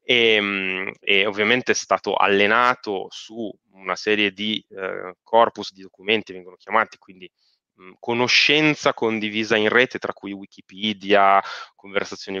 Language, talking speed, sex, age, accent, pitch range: Italian, 120 wpm, male, 20-39, native, 95-120 Hz